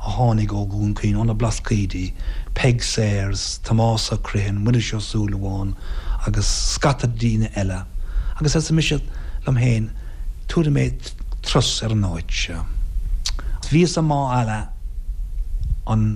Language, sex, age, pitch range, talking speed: English, male, 60-79, 85-125 Hz, 110 wpm